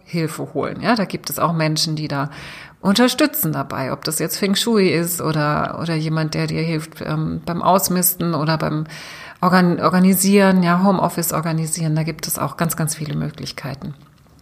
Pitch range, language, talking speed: 160-195 Hz, German, 170 wpm